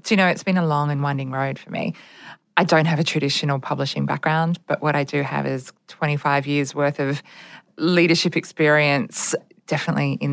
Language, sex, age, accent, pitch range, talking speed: English, female, 20-39, Australian, 150-175 Hz, 185 wpm